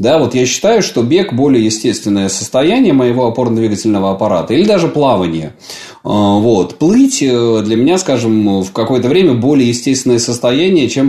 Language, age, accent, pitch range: Russian, 20-39, native, 100-145 Hz